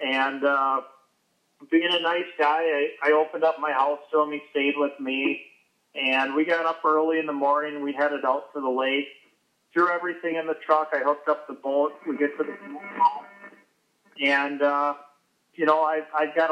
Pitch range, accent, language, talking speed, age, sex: 135-155 Hz, American, English, 195 wpm, 40-59, male